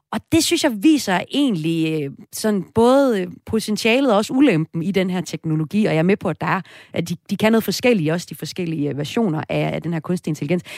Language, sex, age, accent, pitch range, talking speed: Danish, female, 30-49, native, 170-235 Hz, 225 wpm